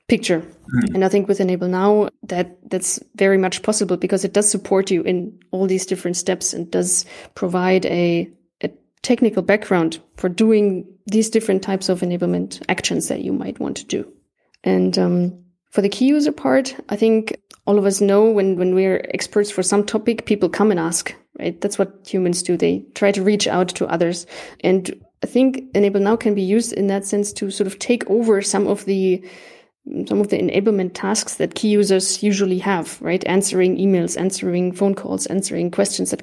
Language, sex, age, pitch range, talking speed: English, female, 20-39, 185-210 Hz, 195 wpm